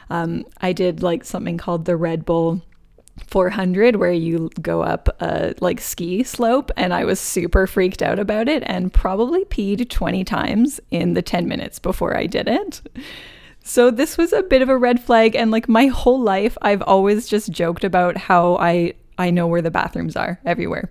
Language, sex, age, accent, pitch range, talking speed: English, female, 20-39, American, 170-215 Hz, 190 wpm